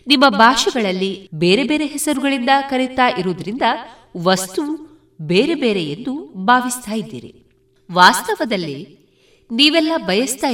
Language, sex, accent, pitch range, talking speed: Kannada, female, native, 190-300 Hz, 90 wpm